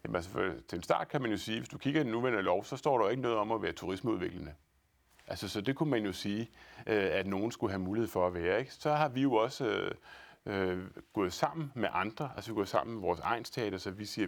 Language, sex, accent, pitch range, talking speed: Danish, male, native, 95-135 Hz, 270 wpm